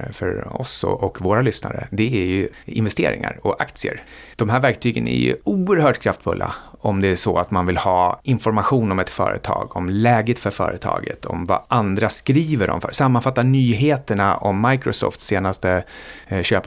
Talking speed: 160 wpm